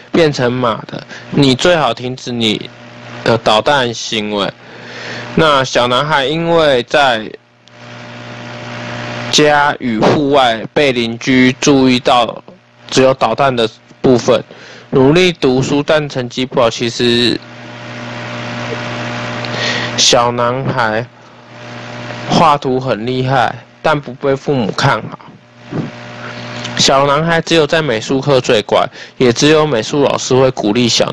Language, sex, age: Chinese, male, 20-39